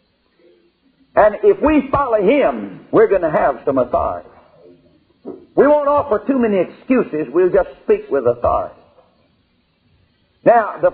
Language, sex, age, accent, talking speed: English, male, 60-79, American, 130 wpm